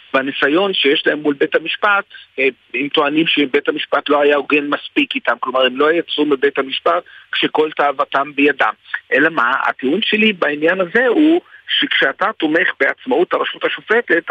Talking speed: 150 wpm